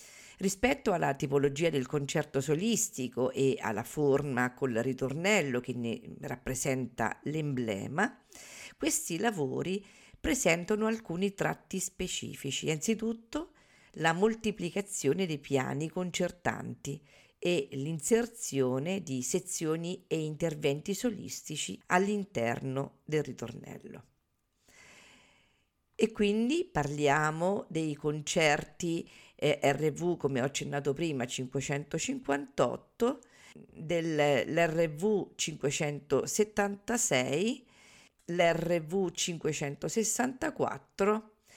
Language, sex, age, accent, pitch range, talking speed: Italian, female, 50-69, native, 140-200 Hz, 75 wpm